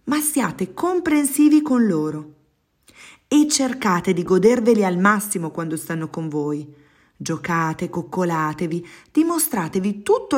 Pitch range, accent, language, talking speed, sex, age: 155-230 Hz, native, Italian, 110 wpm, female, 40-59